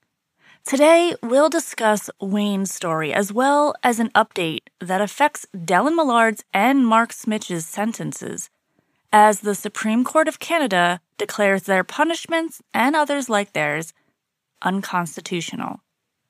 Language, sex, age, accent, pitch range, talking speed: English, female, 30-49, American, 175-240 Hz, 120 wpm